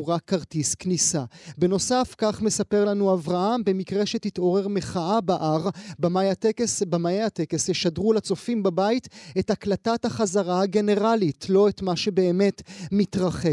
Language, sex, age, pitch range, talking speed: Hebrew, male, 30-49, 175-205 Hz, 120 wpm